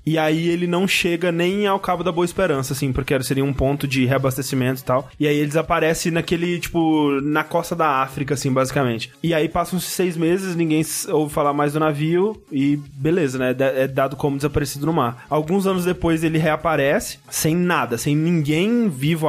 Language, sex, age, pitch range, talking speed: Portuguese, male, 20-39, 145-180 Hz, 195 wpm